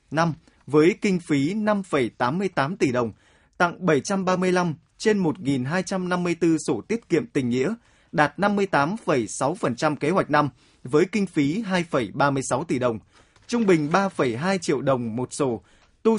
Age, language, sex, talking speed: 20-39, Vietnamese, male, 130 wpm